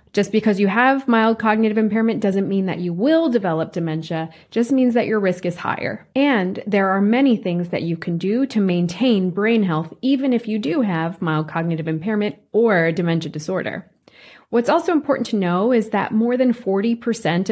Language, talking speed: English, 190 wpm